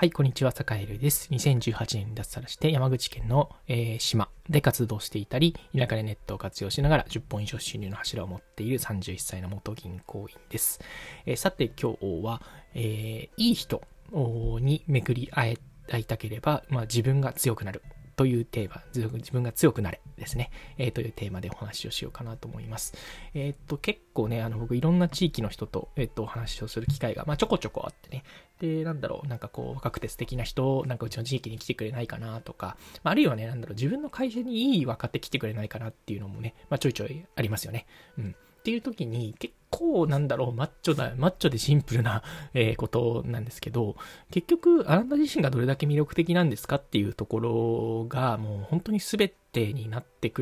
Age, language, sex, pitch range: 20-39, Japanese, male, 110-150 Hz